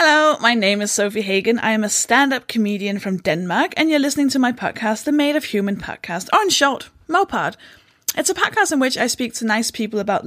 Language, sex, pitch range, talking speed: English, female, 205-270 Hz, 230 wpm